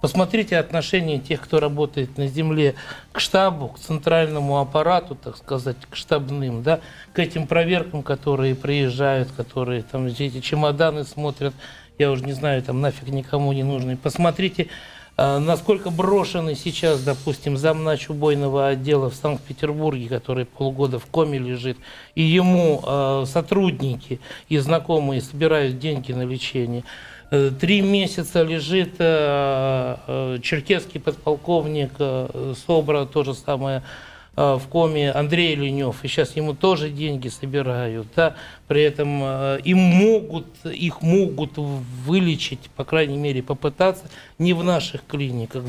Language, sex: Russian, male